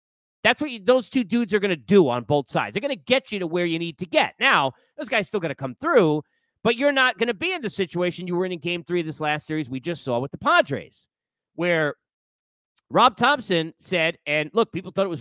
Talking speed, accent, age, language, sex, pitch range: 265 wpm, American, 40-59, English, male, 160-225 Hz